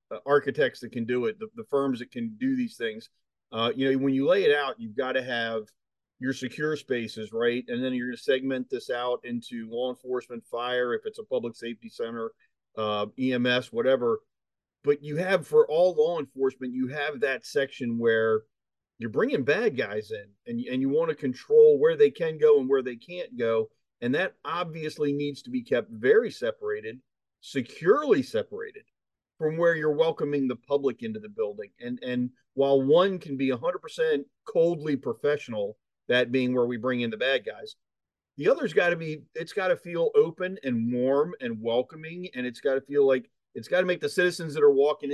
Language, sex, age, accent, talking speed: English, male, 40-59, American, 200 wpm